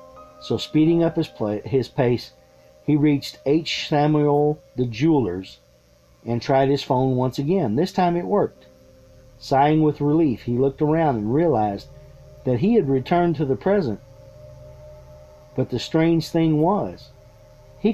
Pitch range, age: 110-150 Hz, 50-69